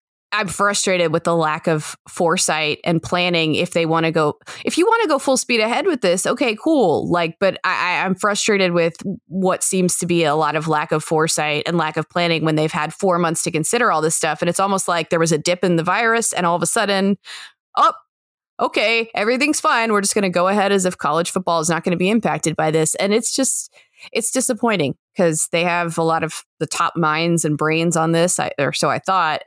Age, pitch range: 20-39, 165-230 Hz